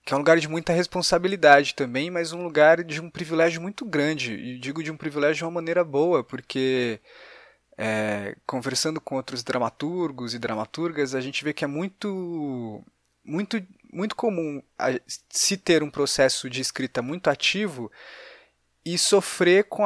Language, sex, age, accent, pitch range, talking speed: Portuguese, male, 20-39, Brazilian, 125-165 Hz, 155 wpm